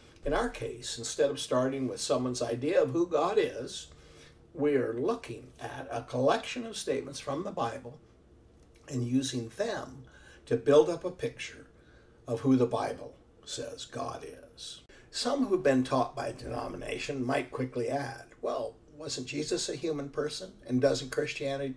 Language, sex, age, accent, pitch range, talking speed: English, male, 60-79, American, 120-150 Hz, 160 wpm